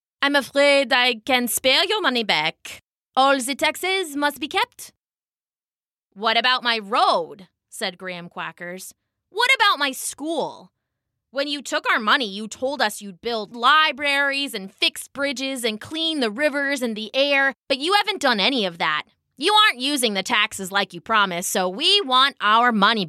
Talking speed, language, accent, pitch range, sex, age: 170 wpm, English, American, 195-280 Hz, female, 20-39